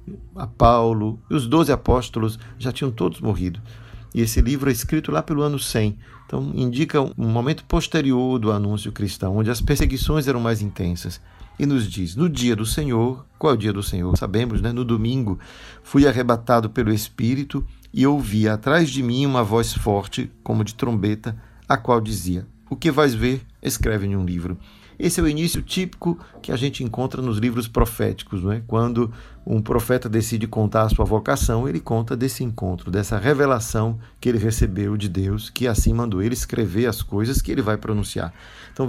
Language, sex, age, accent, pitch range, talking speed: Portuguese, male, 50-69, Brazilian, 105-130 Hz, 185 wpm